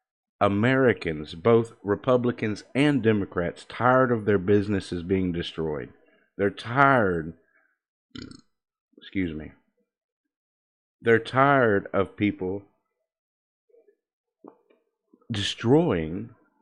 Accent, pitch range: American, 95-135 Hz